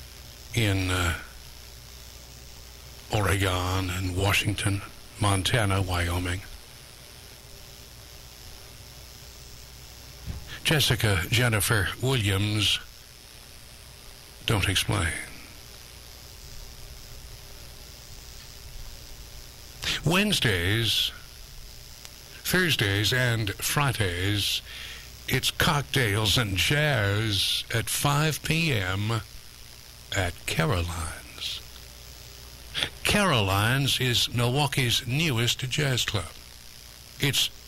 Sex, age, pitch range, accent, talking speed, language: male, 60-79, 90-125 Hz, American, 50 wpm, English